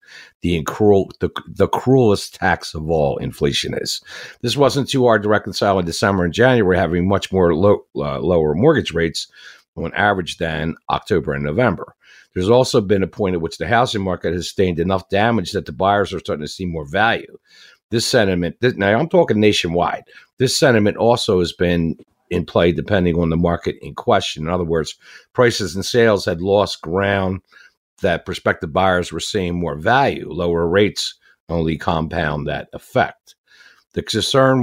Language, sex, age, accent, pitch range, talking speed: English, male, 50-69, American, 85-110 Hz, 170 wpm